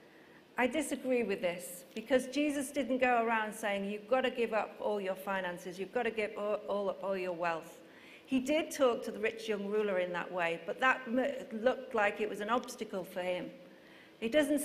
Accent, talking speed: British, 205 wpm